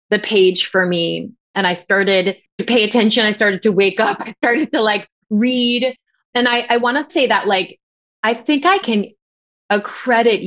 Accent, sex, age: American, female, 30-49